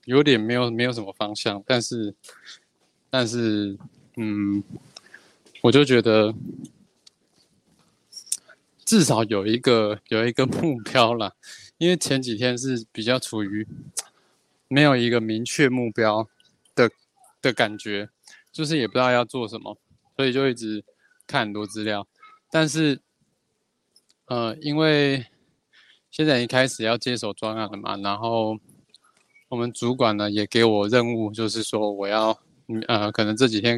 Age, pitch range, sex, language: 20-39, 110-135 Hz, male, Chinese